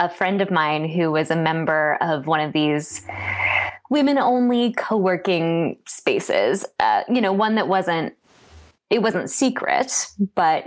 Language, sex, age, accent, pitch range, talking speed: English, female, 20-39, American, 165-205 Hz, 145 wpm